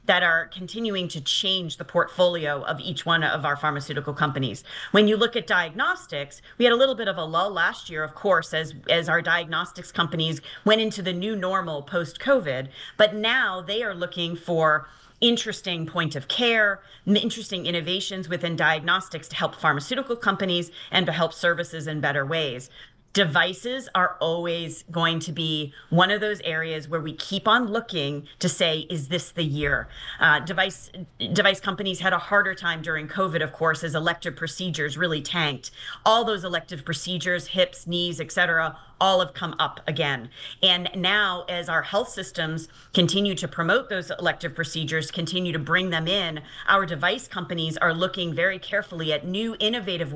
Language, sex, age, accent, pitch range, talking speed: English, female, 40-59, American, 155-190 Hz, 175 wpm